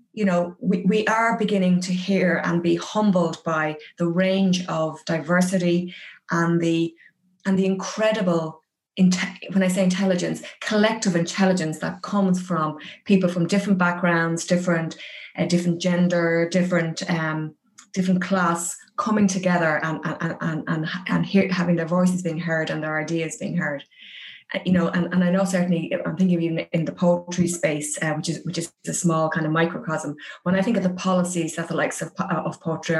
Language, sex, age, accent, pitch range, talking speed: English, female, 20-39, Irish, 160-185 Hz, 165 wpm